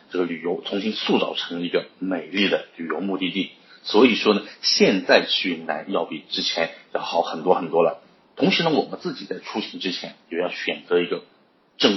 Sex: male